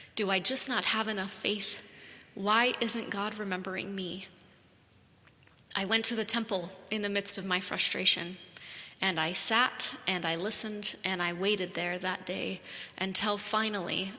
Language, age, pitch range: English, 30-49, 190-220 Hz